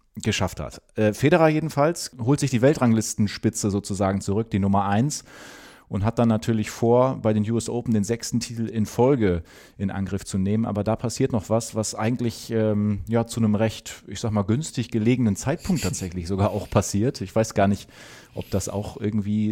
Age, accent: 30-49, German